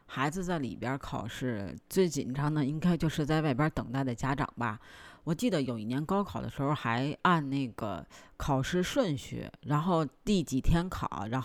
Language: Chinese